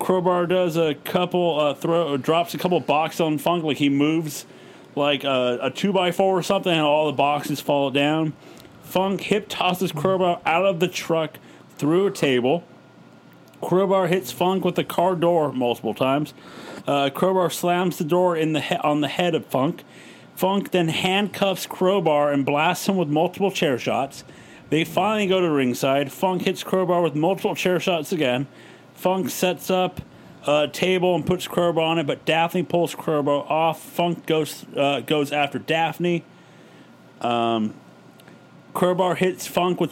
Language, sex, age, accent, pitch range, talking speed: English, male, 40-59, American, 150-185 Hz, 170 wpm